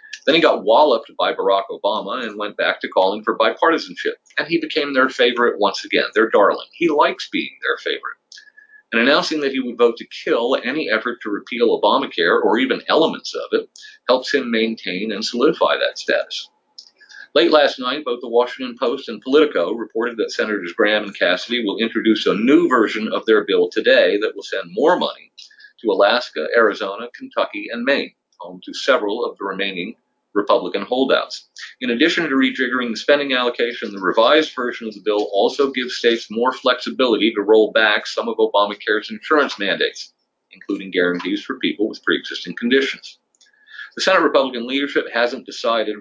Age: 50-69